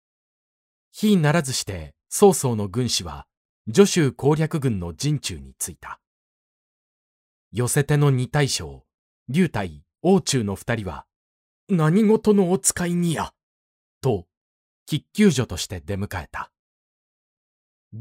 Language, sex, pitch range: Japanese, male, 100-150 Hz